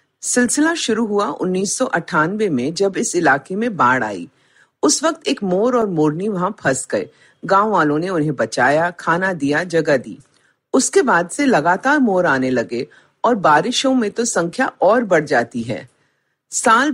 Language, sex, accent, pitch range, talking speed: Hindi, female, native, 155-235 Hz, 165 wpm